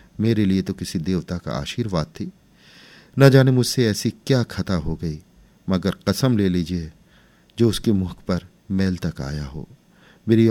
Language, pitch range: Hindi, 85-115 Hz